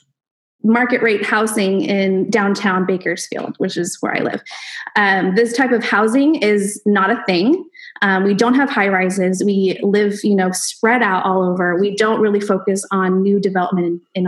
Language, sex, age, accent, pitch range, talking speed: English, female, 20-39, American, 190-235 Hz, 175 wpm